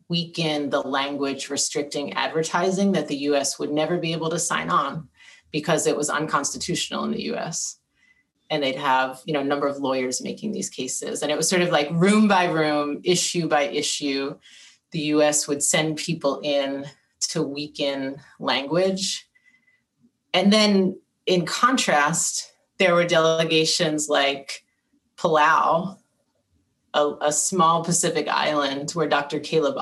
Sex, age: female, 30-49